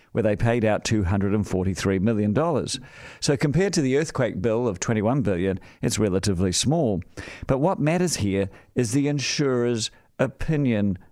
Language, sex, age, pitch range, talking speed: English, male, 50-69, 105-145 Hz, 140 wpm